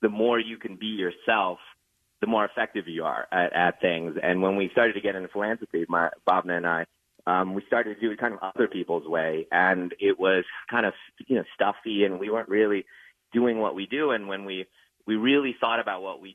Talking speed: 225 wpm